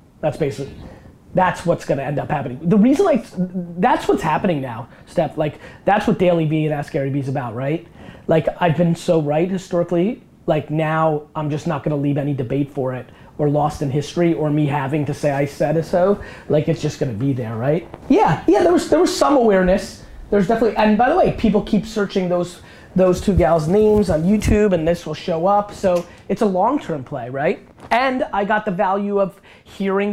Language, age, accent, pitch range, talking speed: English, 30-49, American, 145-195 Hz, 215 wpm